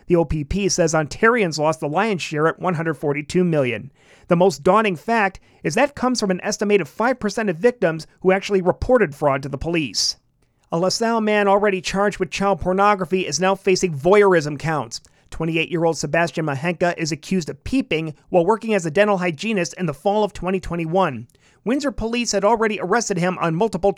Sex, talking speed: male, 175 wpm